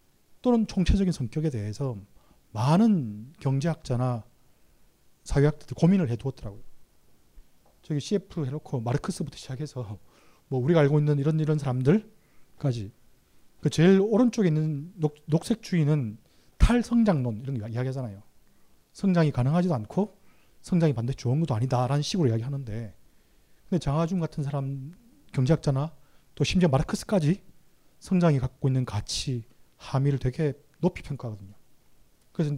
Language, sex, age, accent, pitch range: Korean, male, 30-49, native, 120-165 Hz